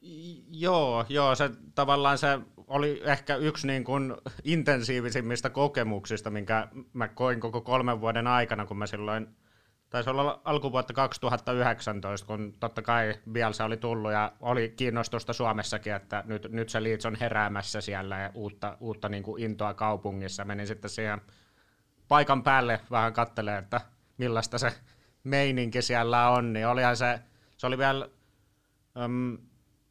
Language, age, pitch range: Finnish, 30-49, 110-130 Hz